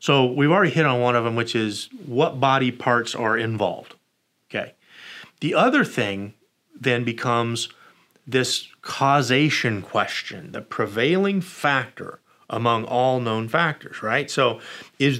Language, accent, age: English, American, 30-49